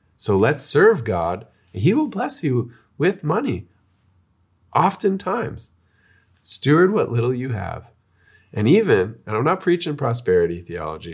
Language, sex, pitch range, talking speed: English, male, 90-130 Hz, 130 wpm